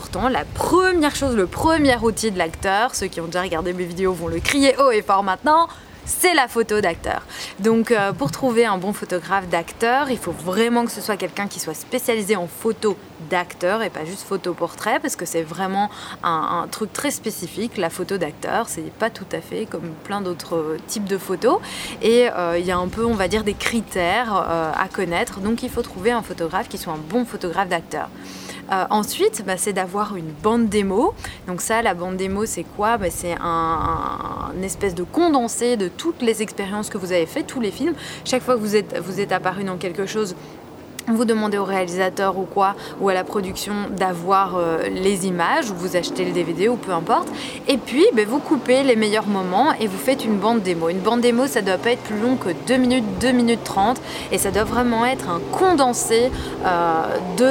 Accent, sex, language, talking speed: French, female, French, 215 wpm